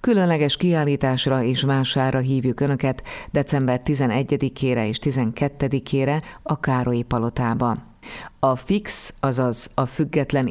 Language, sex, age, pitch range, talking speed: Hungarian, female, 30-49, 125-145 Hz, 105 wpm